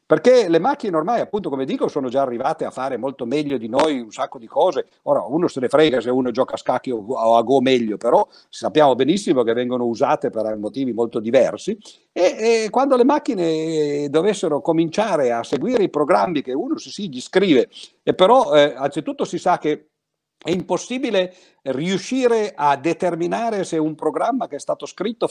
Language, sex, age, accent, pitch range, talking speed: Italian, male, 50-69, native, 130-205 Hz, 185 wpm